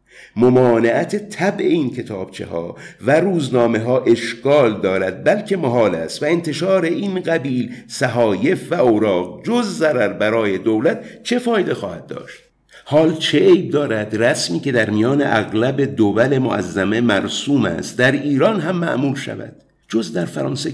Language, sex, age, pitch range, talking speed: English, male, 50-69, 110-145 Hz, 140 wpm